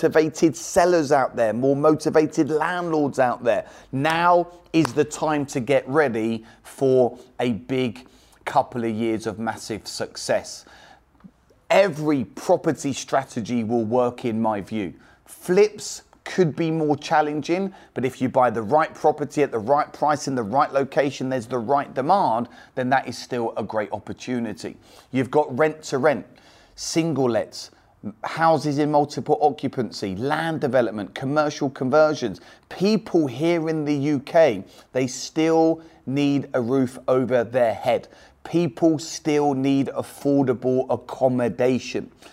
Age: 30-49